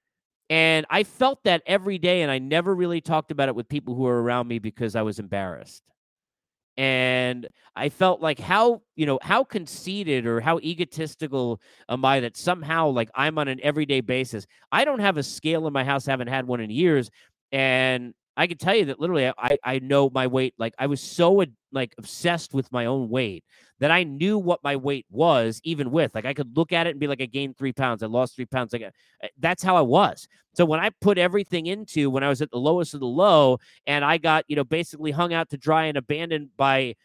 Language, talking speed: English, 230 wpm